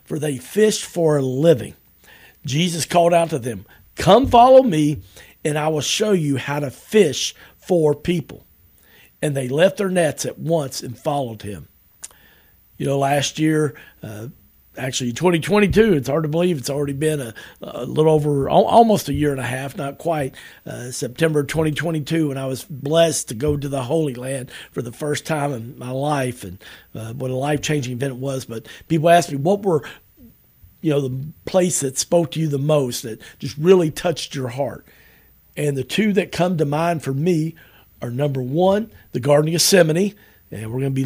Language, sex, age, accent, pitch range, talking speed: English, male, 50-69, American, 130-165 Hz, 195 wpm